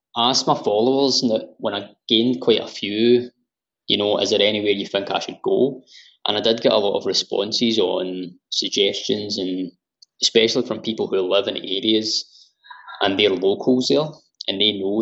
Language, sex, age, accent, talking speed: English, male, 20-39, British, 180 wpm